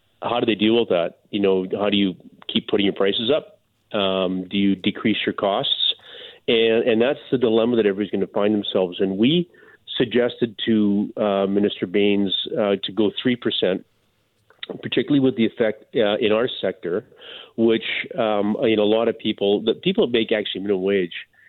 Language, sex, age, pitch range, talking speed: English, male, 40-59, 100-115 Hz, 185 wpm